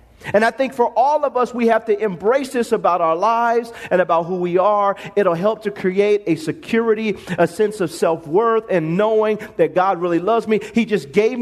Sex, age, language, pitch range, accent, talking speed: male, 40-59, English, 195-245 Hz, American, 210 wpm